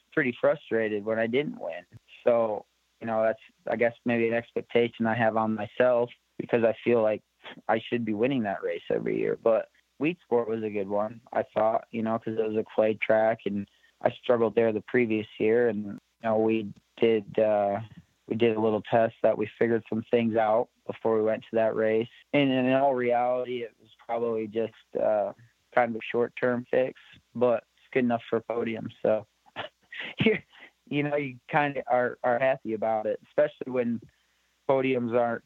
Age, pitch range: 20-39, 110-125 Hz